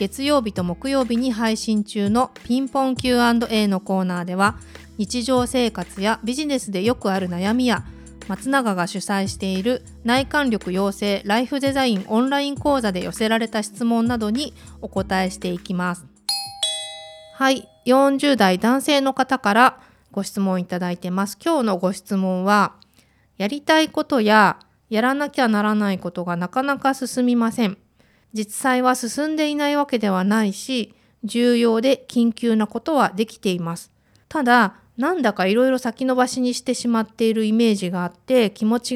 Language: Japanese